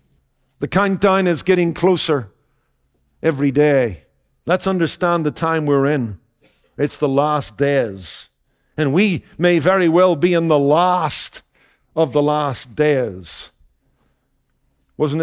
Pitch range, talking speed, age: 145-195 Hz, 120 wpm, 50-69